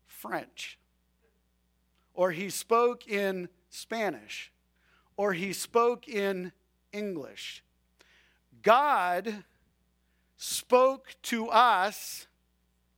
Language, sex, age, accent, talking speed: English, male, 50-69, American, 70 wpm